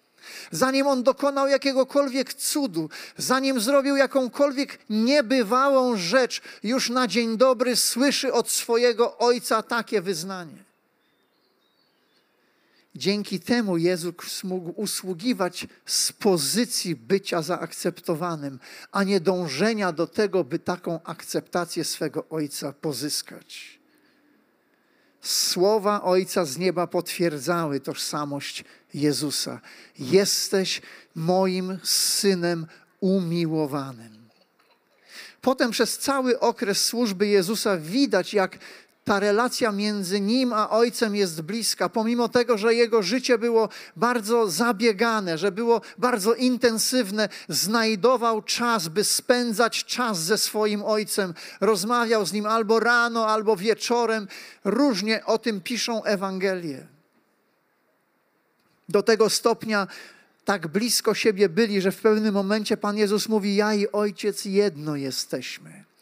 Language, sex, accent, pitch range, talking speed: Polish, male, native, 185-235 Hz, 105 wpm